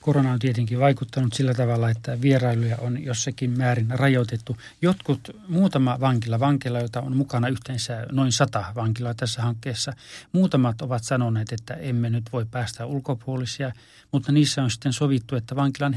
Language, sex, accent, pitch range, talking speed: Finnish, male, native, 115-130 Hz, 155 wpm